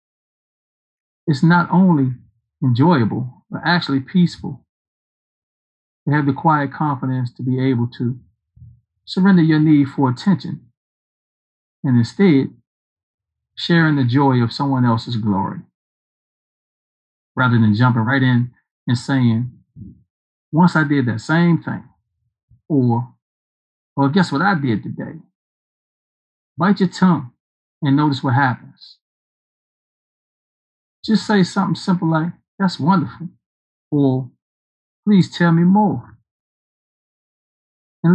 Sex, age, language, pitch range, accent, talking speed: male, 50-69, English, 115-160 Hz, American, 110 wpm